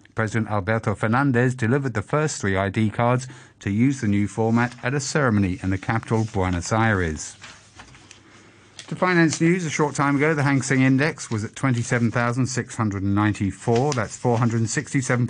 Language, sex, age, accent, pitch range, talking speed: English, male, 50-69, British, 110-135 Hz, 150 wpm